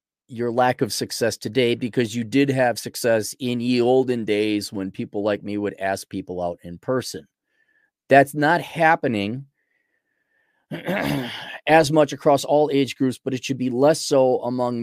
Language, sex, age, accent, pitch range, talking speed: English, male, 30-49, American, 105-140 Hz, 160 wpm